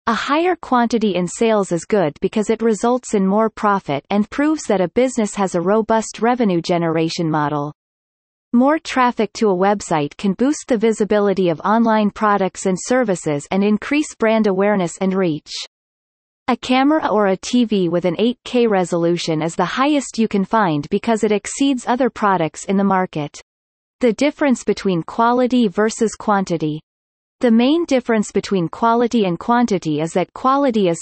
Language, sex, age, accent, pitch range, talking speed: English, female, 30-49, American, 180-245 Hz, 165 wpm